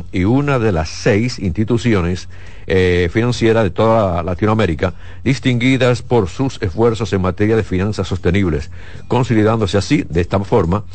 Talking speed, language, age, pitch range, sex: 135 wpm, Spanish, 60-79, 90-115 Hz, male